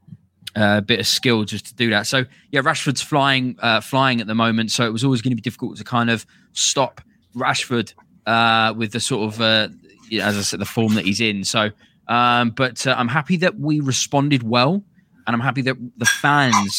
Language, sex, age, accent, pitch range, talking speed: English, male, 20-39, British, 110-130 Hz, 215 wpm